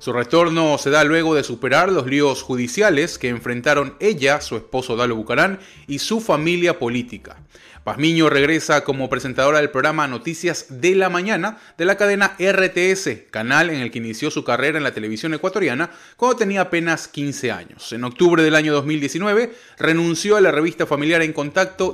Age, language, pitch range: 30-49, Spanish, 130-185 Hz